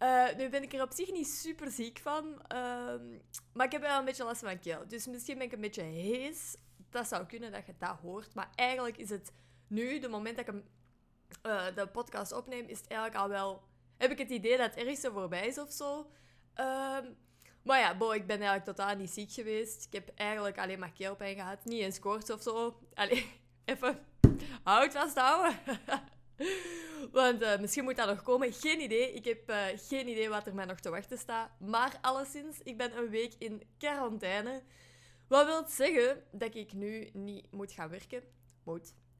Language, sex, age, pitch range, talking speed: Dutch, female, 20-39, 195-255 Hz, 210 wpm